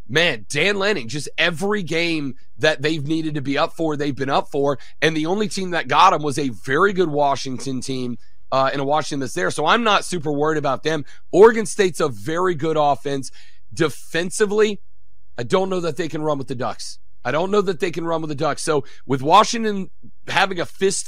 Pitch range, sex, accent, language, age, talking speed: 140-170 Hz, male, American, English, 40-59, 215 wpm